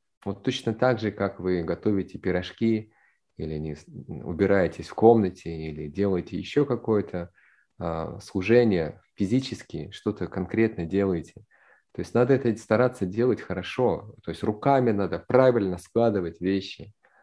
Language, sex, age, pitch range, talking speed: Russian, male, 30-49, 90-115 Hz, 120 wpm